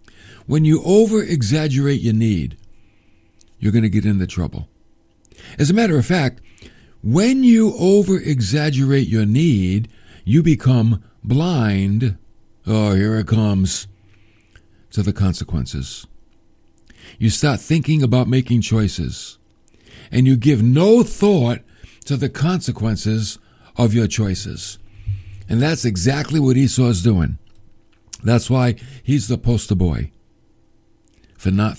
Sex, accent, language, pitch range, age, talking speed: male, American, English, 105-140 Hz, 60-79, 120 wpm